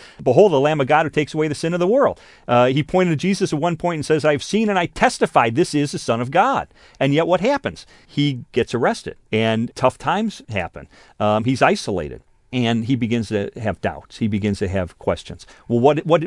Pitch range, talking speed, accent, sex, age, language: 125-205 Hz, 225 wpm, American, male, 40-59, English